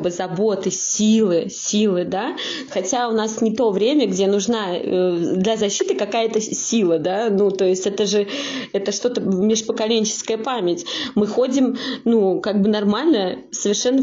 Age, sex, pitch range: 20-39, female, 195-235 Hz